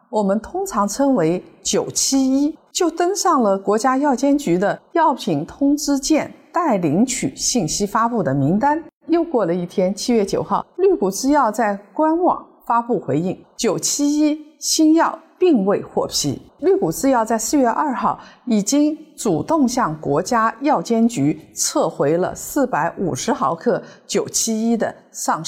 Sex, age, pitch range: female, 50-69, 185-290 Hz